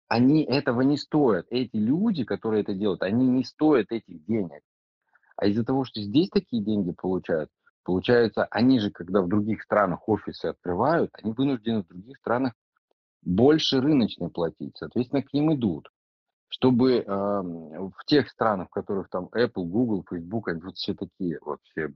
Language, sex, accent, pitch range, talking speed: Russian, male, native, 95-140 Hz, 160 wpm